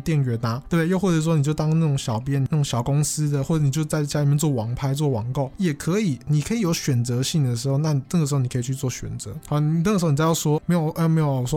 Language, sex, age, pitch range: Chinese, male, 20-39, 135-170 Hz